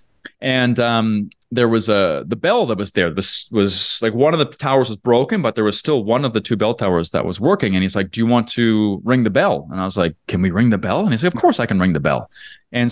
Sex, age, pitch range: male, 20-39, 100-125 Hz